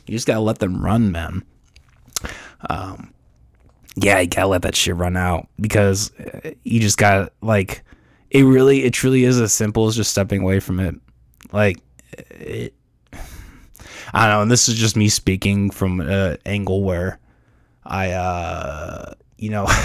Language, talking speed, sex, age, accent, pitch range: English, 165 wpm, male, 20-39, American, 95-110 Hz